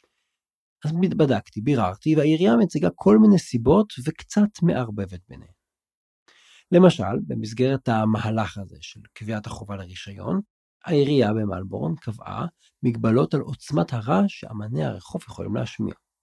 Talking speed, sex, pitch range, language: 110 wpm, male, 100-135 Hz, Hebrew